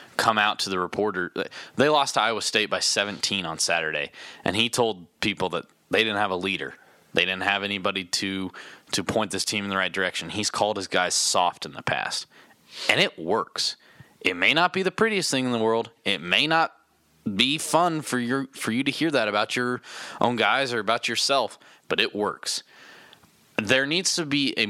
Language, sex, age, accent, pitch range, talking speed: English, male, 20-39, American, 105-145 Hz, 205 wpm